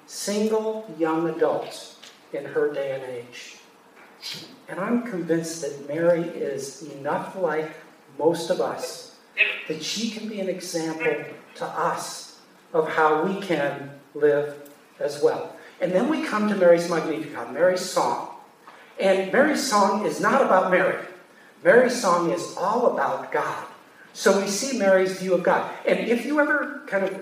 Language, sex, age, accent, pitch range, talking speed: English, male, 50-69, American, 165-230 Hz, 150 wpm